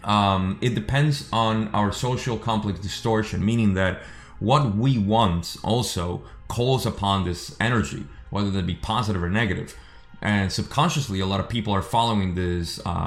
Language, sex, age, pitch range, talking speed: English, male, 30-49, 90-115 Hz, 150 wpm